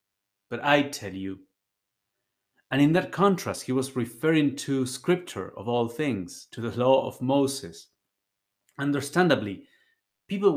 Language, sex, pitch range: English, male, 100-140 Hz